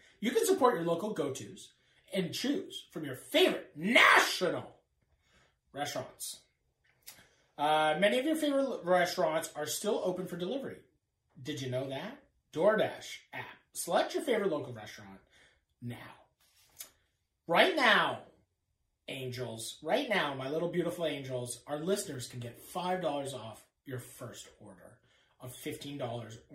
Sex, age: male, 30-49